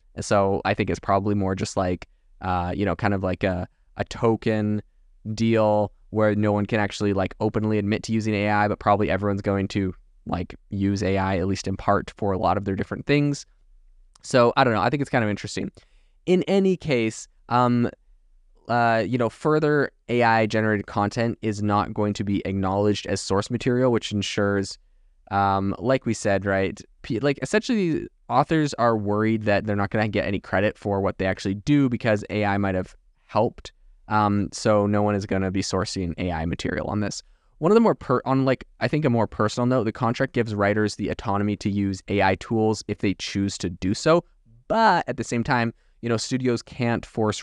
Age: 20-39